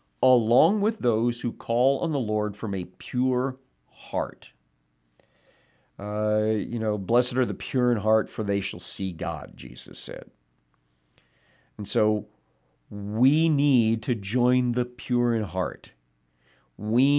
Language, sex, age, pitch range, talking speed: English, male, 50-69, 95-125 Hz, 135 wpm